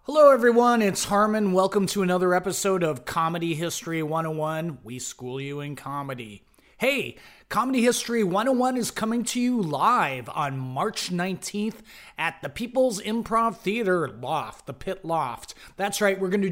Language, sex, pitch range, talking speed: English, male, 150-225 Hz, 155 wpm